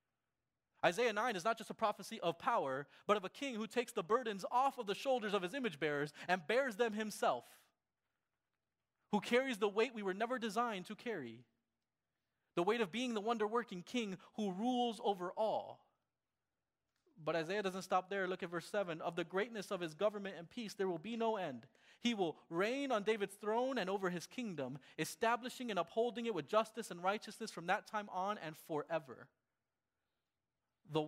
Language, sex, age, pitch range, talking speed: English, male, 30-49, 155-230 Hz, 185 wpm